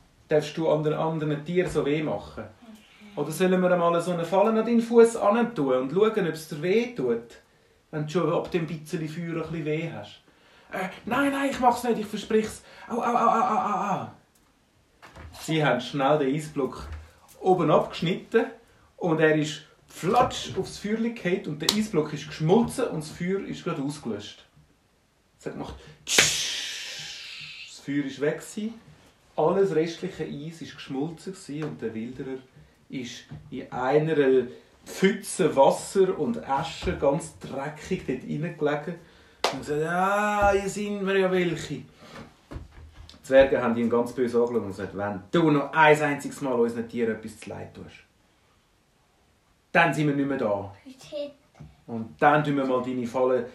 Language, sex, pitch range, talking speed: German, male, 130-190 Hz, 160 wpm